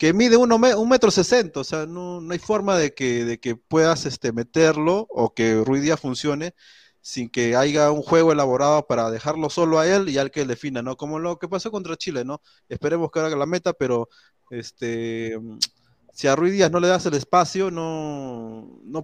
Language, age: Spanish, 30-49